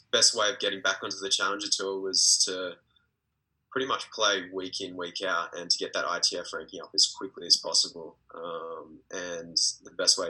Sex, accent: male, Australian